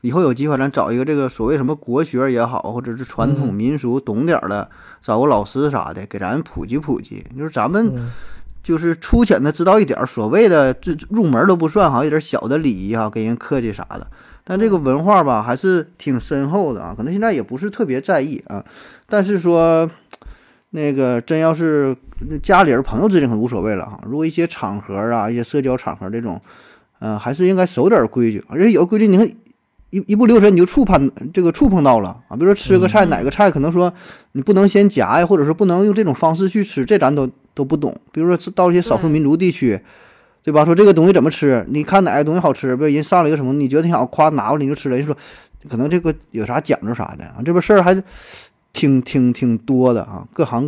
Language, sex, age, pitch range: Chinese, male, 20-39, 125-180 Hz